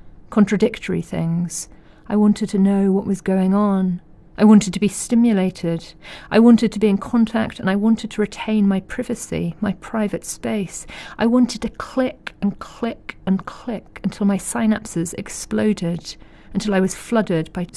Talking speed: 160 wpm